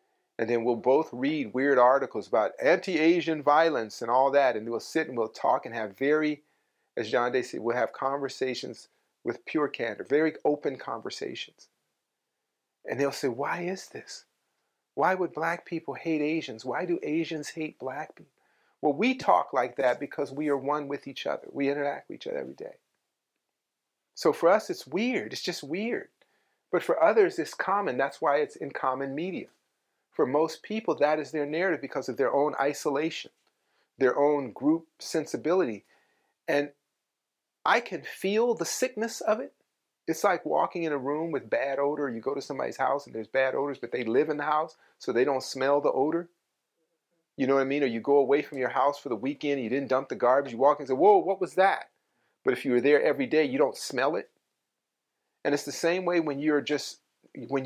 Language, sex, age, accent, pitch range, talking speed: English, male, 40-59, American, 135-165 Hz, 200 wpm